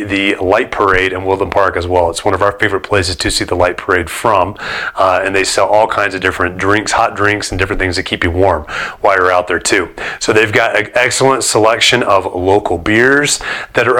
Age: 30-49